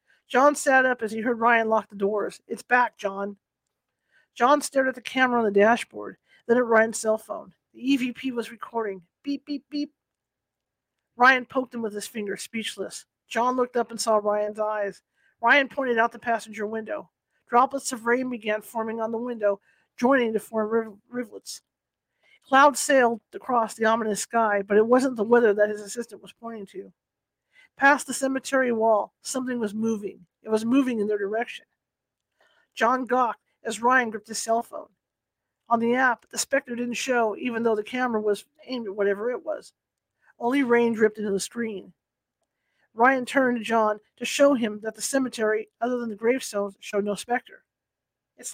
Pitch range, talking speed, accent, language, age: 215-255 Hz, 180 wpm, American, English, 50-69